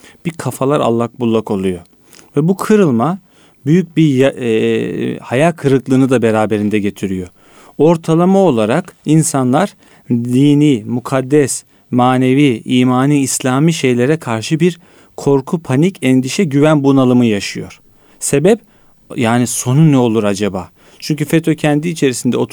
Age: 40-59